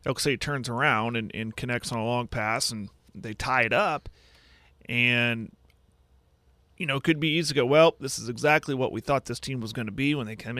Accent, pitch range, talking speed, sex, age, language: American, 105-135 Hz, 225 wpm, male, 30-49, English